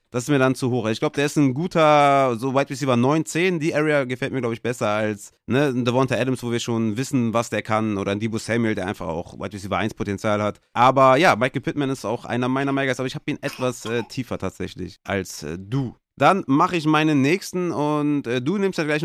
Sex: male